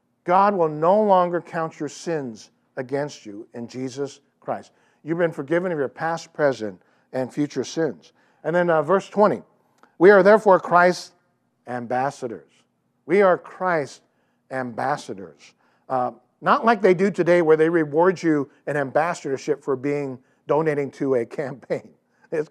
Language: English